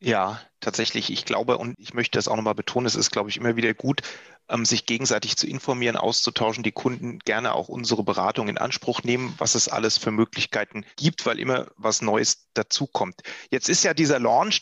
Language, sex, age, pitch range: German, male, 30-49, 115-155 Hz